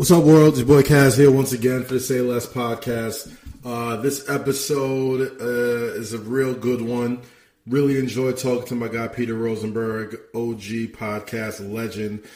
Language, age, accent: English, 20-39, American